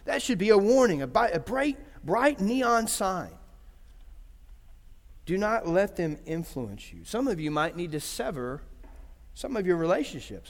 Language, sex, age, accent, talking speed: English, male, 40-59, American, 155 wpm